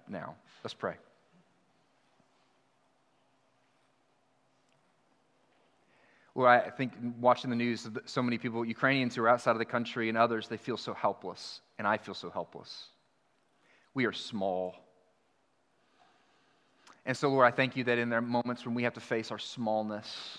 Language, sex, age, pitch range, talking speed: English, male, 30-49, 110-125 Hz, 145 wpm